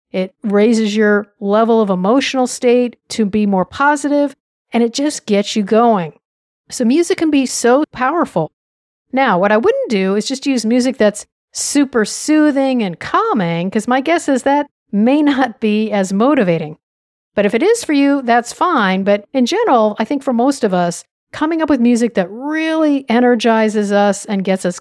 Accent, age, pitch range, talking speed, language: American, 50-69, 205-280 Hz, 180 wpm, English